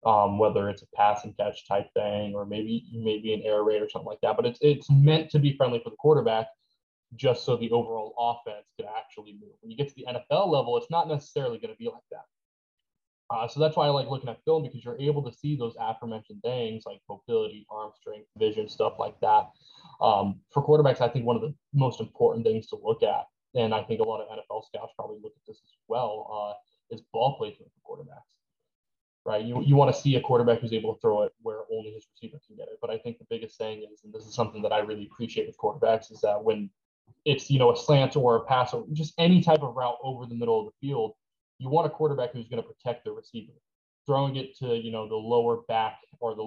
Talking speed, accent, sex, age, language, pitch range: 245 wpm, American, male, 20-39, English, 110-155 Hz